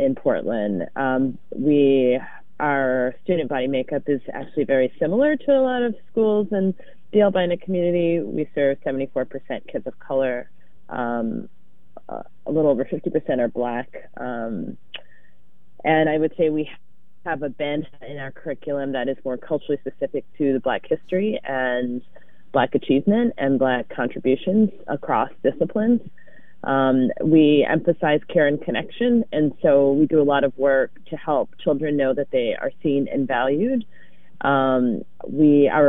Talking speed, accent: 155 wpm, American